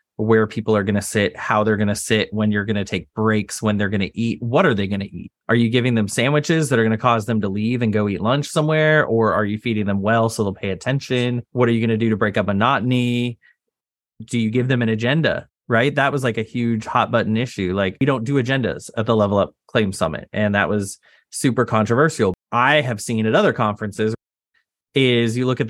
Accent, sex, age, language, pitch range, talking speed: American, male, 20-39, English, 110-130 Hz, 250 wpm